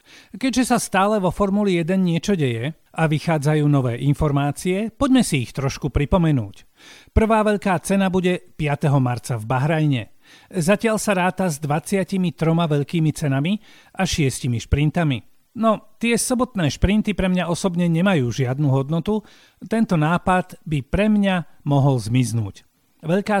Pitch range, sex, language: 140-195 Hz, male, Slovak